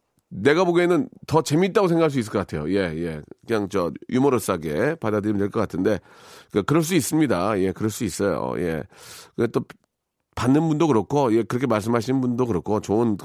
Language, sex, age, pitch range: Korean, male, 40-59, 120-175 Hz